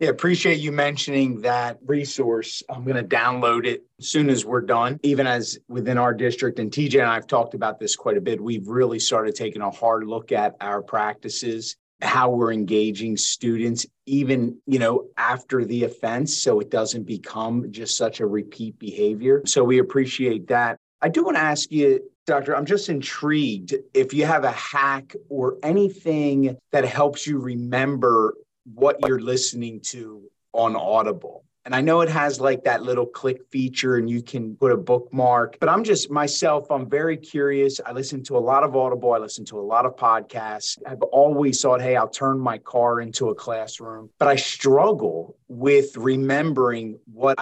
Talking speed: 185 wpm